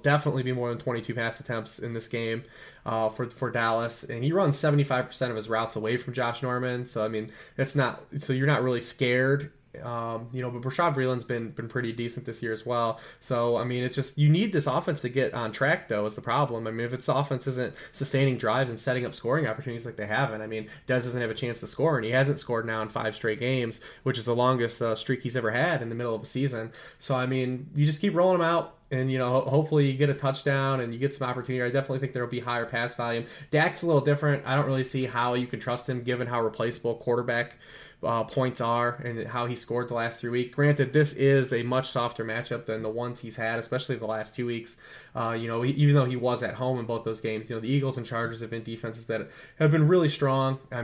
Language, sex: English, male